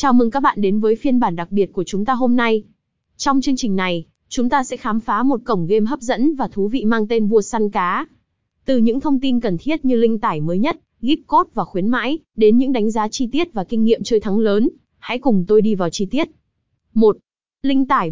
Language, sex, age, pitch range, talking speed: Vietnamese, female, 20-39, 205-255 Hz, 250 wpm